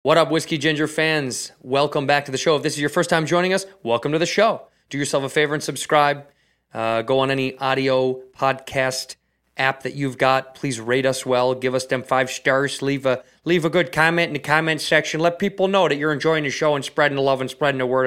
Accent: American